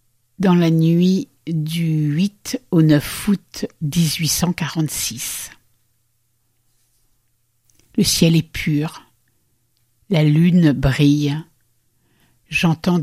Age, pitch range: 60-79, 120-170 Hz